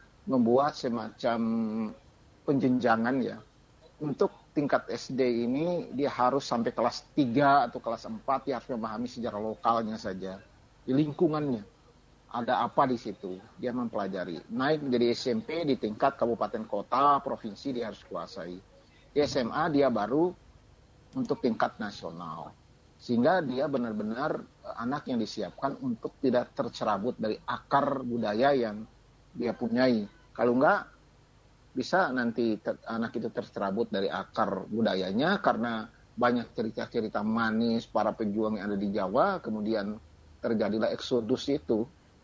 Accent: native